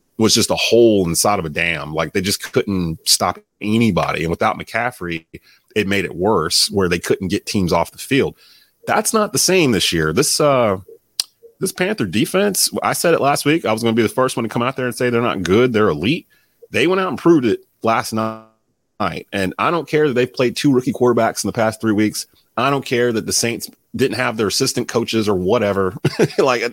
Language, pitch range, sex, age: English, 100-130 Hz, male, 30-49